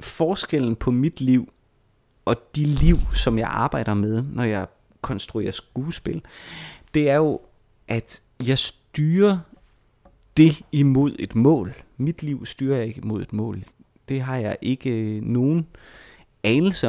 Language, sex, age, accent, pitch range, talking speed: Danish, male, 30-49, native, 110-135 Hz, 140 wpm